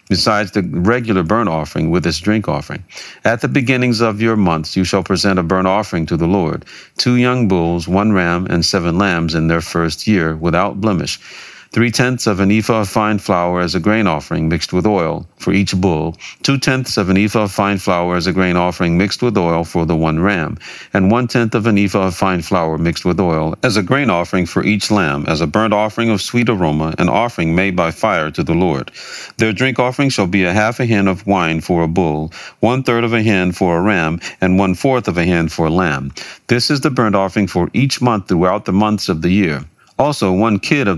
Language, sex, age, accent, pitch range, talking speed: English, male, 50-69, American, 85-110 Hz, 225 wpm